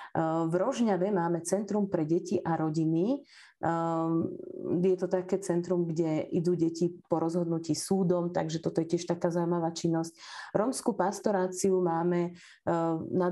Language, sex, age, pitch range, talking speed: Slovak, female, 30-49, 160-180 Hz, 130 wpm